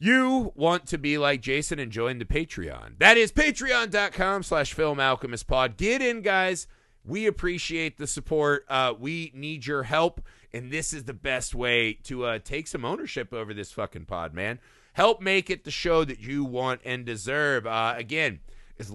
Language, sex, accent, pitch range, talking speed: English, male, American, 115-155 Hz, 185 wpm